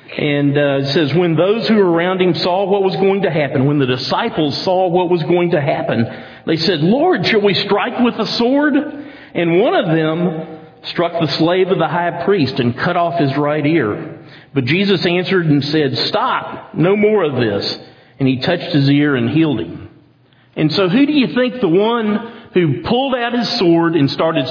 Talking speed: 205 wpm